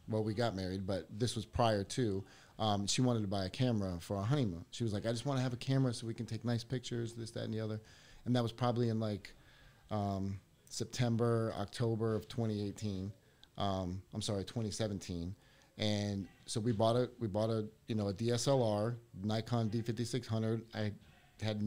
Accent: American